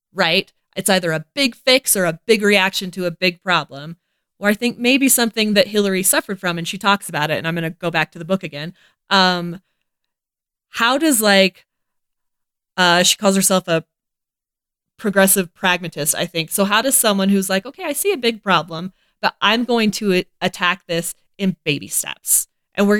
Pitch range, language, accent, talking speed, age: 175-220 Hz, English, American, 195 wpm, 20-39